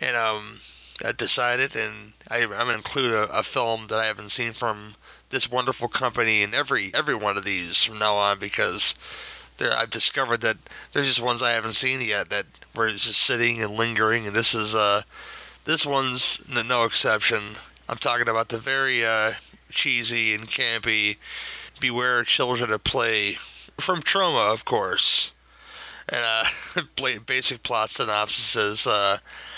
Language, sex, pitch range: English, male, 110-125 Hz